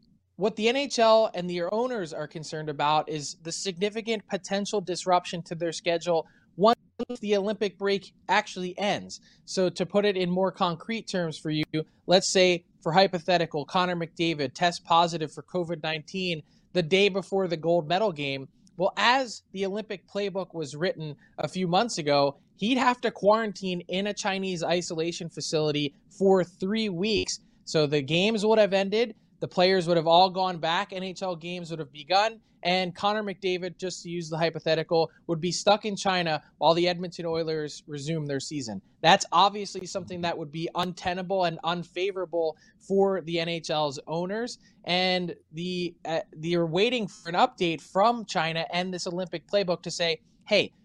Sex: male